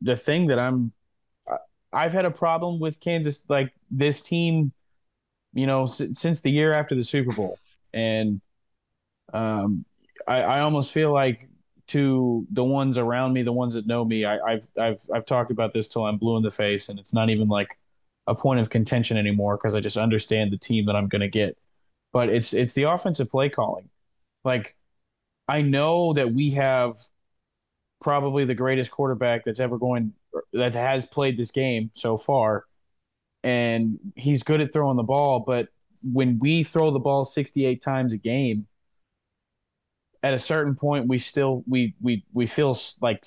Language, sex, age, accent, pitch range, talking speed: English, male, 30-49, American, 110-135 Hz, 180 wpm